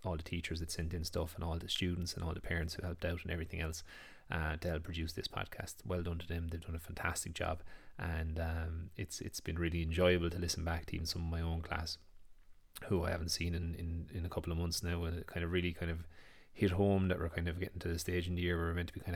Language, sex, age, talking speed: English, male, 30-49, 280 wpm